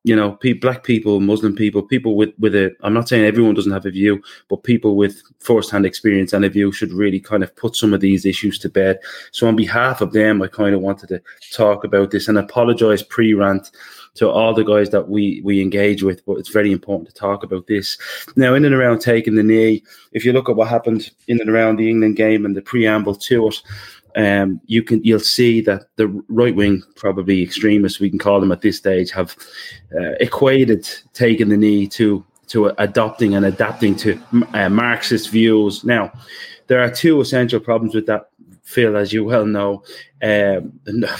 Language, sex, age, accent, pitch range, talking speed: English, male, 20-39, British, 100-115 Hz, 205 wpm